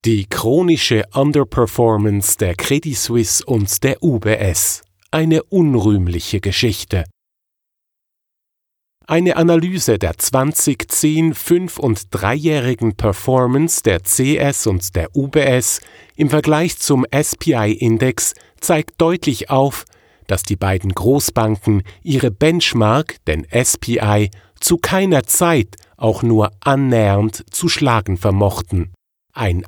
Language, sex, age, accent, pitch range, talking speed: German, male, 50-69, German, 105-145 Hz, 100 wpm